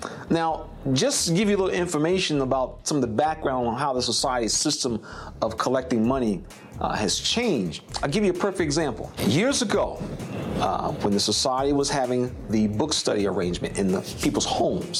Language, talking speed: English, 185 wpm